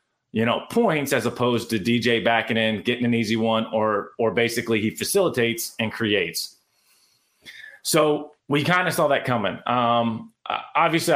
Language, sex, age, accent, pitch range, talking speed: English, male, 30-49, American, 115-140 Hz, 155 wpm